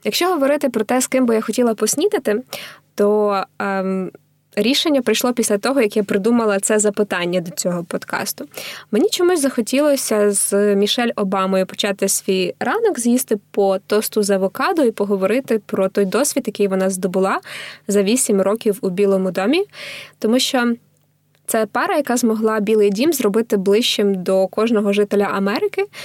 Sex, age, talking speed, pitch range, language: female, 20-39, 150 wpm, 200-230 Hz, Ukrainian